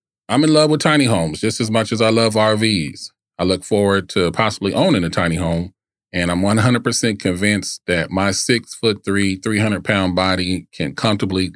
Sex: male